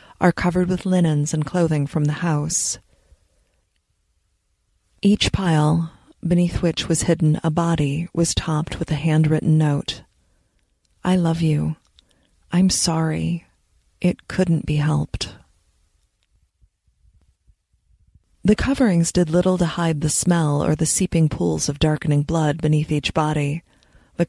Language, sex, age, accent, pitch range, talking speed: English, female, 30-49, American, 105-170 Hz, 125 wpm